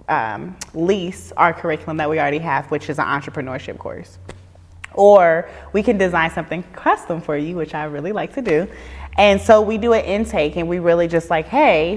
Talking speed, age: 195 wpm, 20-39